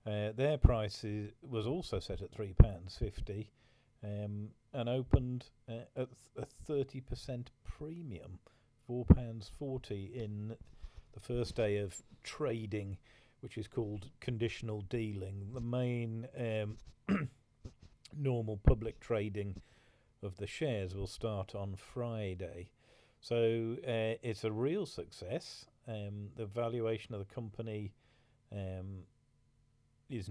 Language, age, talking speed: English, 40-59, 110 wpm